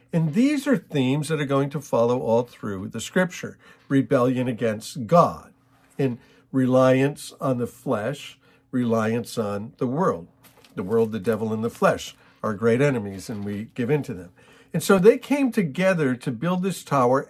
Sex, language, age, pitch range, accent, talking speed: male, English, 50-69, 130-185 Hz, American, 175 wpm